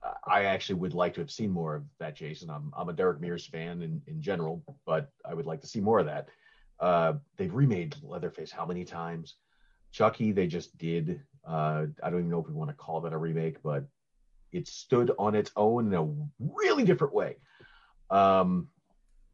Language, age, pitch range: English, 40-59, 85-145 Hz